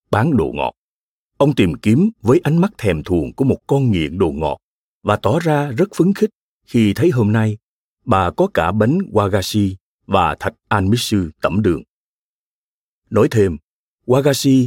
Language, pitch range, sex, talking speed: Vietnamese, 100-160 Hz, male, 165 wpm